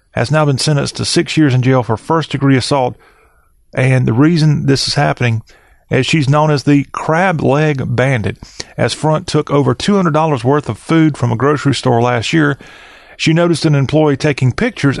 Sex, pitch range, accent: male, 120-150 Hz, American